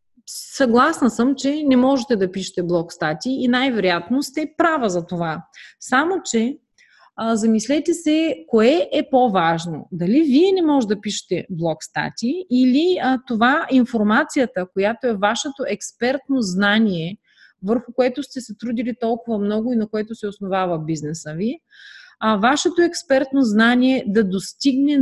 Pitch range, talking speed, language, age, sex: 195-270 Hz, 140 wpm, Bulgarian, 30-49, female